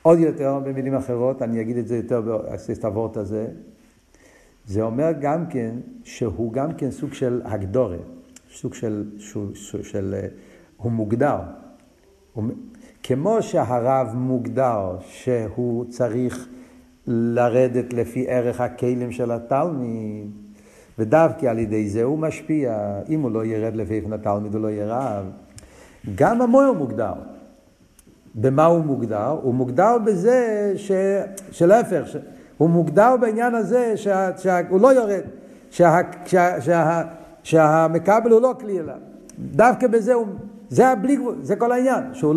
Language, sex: Hebrew, male